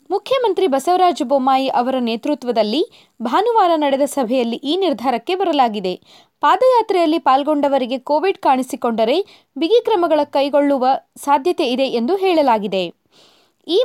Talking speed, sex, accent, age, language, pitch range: 100 wpm, female, native, 20-39, Kannada, 255-360 Hz